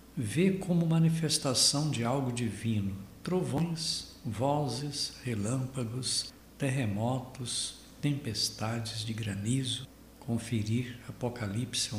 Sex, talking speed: male, 75 wpm